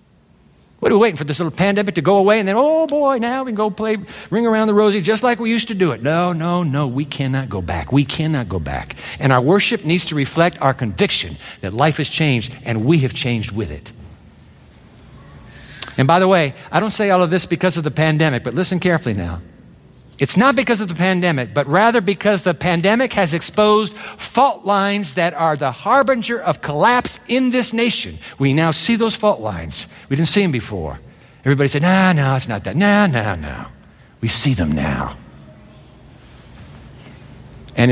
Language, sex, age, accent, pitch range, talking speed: English, male, 60-79, American, 135-210 Hz, 205 wpm